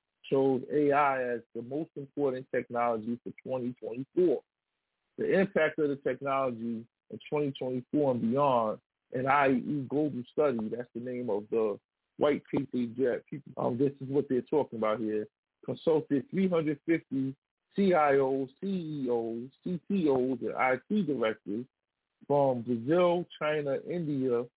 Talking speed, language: 120 wpm, English